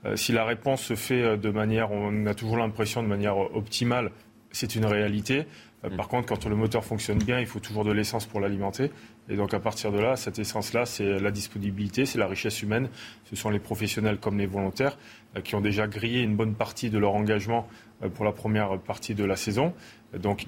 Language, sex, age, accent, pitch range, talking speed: French, male, 30-49, French, 105-115 Hz, 210 wpm